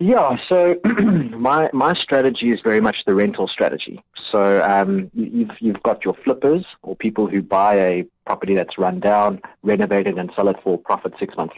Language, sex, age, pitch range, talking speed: English, male, 30-49, 100-130 Hz, 180 wpm